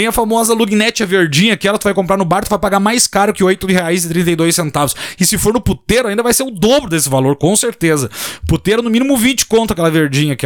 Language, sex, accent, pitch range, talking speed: Portuguese, male, Brazilian, 150-210 Hz, 240 wpm